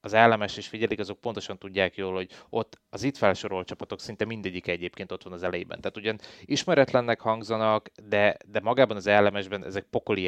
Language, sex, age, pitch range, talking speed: Hungarian, male, 20-39, 90-105 Hz, 185 wpm